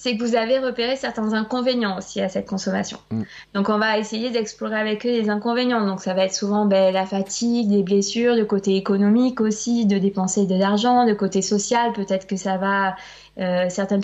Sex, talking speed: female, 200 wpm